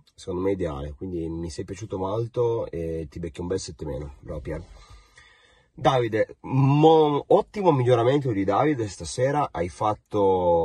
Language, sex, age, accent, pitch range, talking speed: Italian, male, 30-49, native, 75-95 Hz, 140 wpm